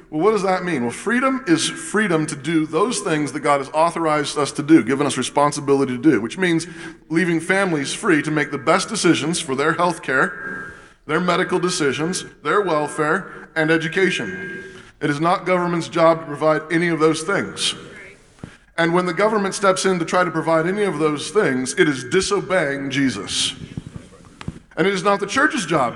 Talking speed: 190 wpm